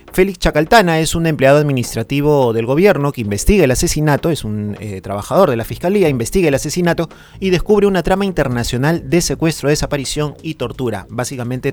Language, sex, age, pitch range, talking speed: Spanish, male, 30-49, 115-165 Hz, 170 wpm